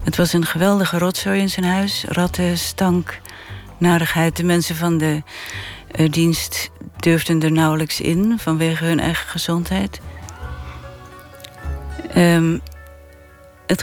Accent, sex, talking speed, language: Dutch, female, 115 wpm, Dutch